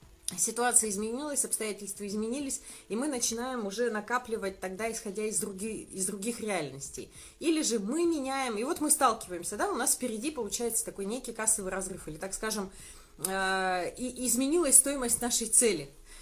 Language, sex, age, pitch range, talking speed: Russian, female, 30-49, 190-250 Hz, 145 wpm